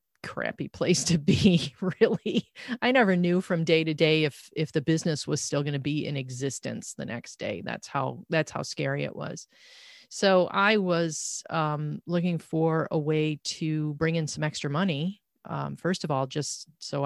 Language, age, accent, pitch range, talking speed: English, 30-49, American, 150-180 Hz, 185 wpm